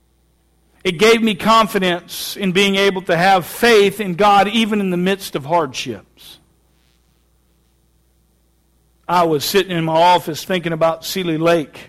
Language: English